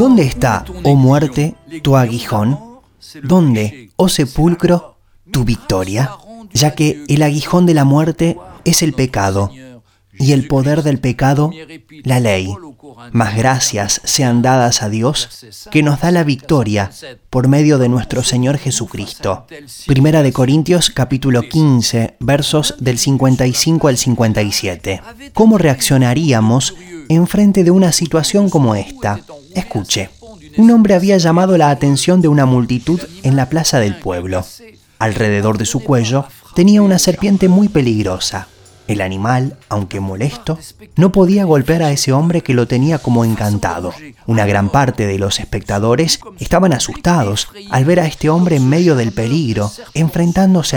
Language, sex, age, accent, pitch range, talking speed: French, male, 20-39, Argentinian, 115-160 Hz, 145 wpm